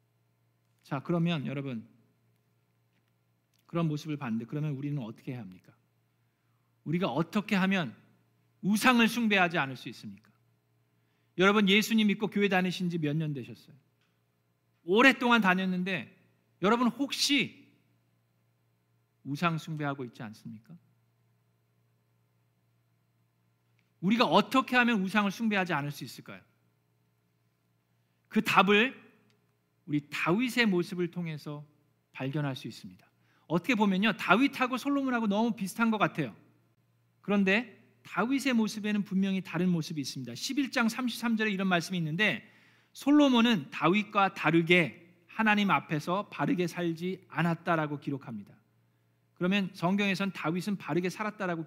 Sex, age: male, 40-59